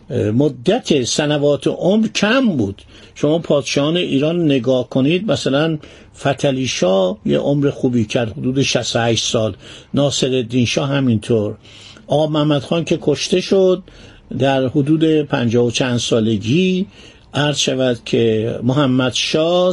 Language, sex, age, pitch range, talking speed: Persian, male, 50-69, 120-150 Hz, 120 wpm